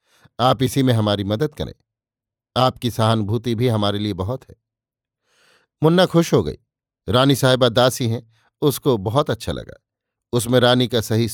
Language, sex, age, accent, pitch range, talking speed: Hindi, male, 50-69, native, 110-130 Hz, 155 wpm